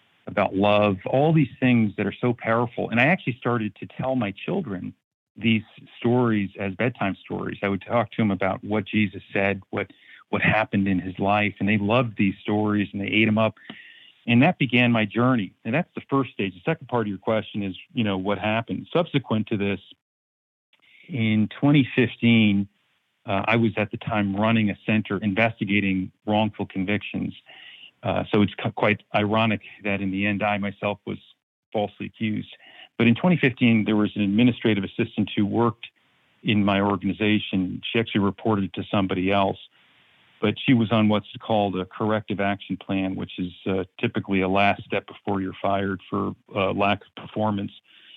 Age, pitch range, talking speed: 40-59, 100-115 Hz, 180 wpm